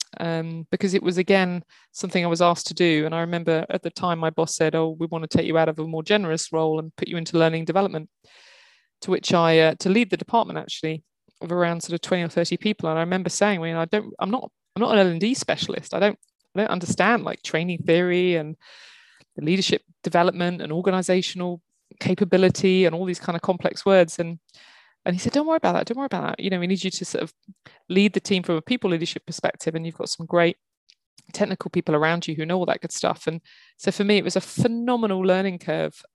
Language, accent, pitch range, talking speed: English, British, 165-190 Hz, 240 wpm